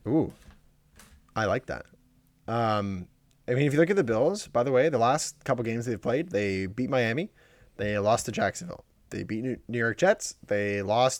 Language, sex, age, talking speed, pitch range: English, male, 20-39, 195 wpm, 115-150 Hz